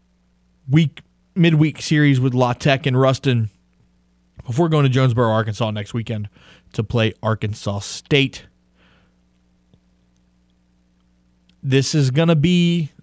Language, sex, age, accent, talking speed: English, male, 20-39, American, 105 wpm